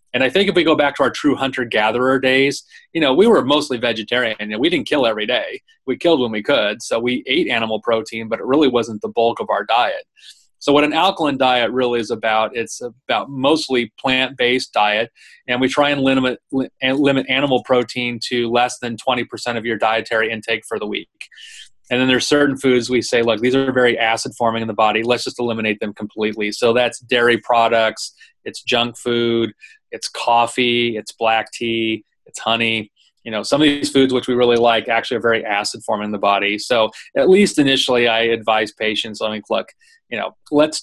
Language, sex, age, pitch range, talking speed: English, male, 30-49, 110-135 Hz, 205 wpm